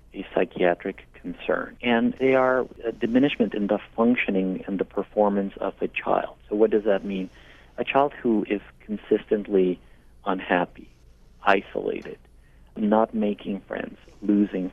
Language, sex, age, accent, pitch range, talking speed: English, male, 50-69, American, 95-110 Hz, 130 wpm